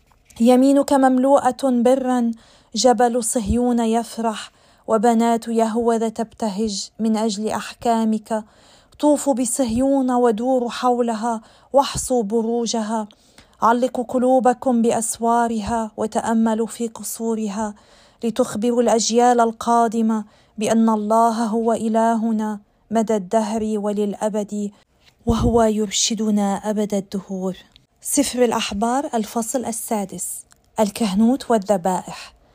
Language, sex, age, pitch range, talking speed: Arabic, female, 40-59, 210-240 Hz, 80 wpm